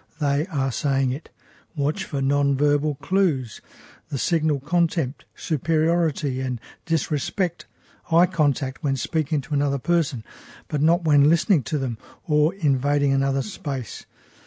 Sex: male